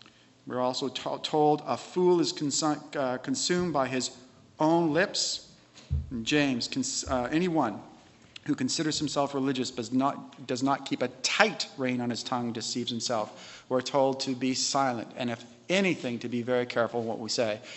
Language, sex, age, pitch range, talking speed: English, male, 40-59, 130-165 Hz, 170 wpm